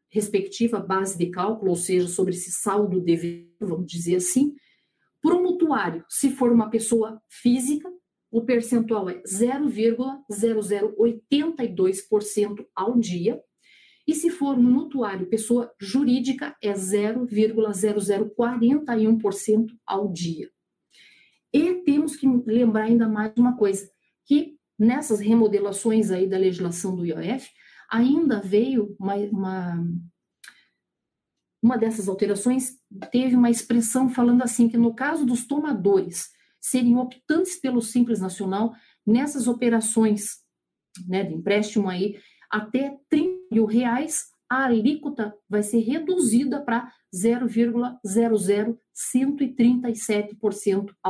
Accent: Brazilian